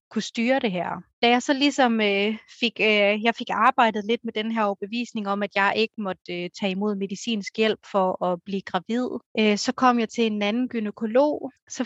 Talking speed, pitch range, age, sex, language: 215 wpm, 200-235 Hz, 30-49, female, Danish